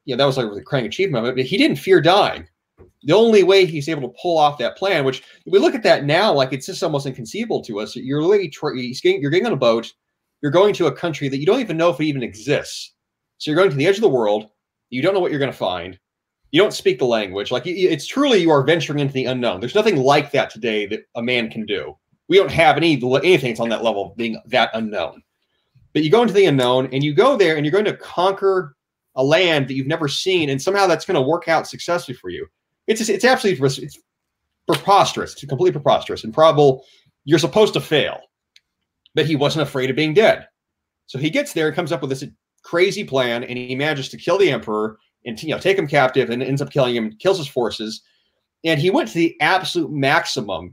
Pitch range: 130-180 Hz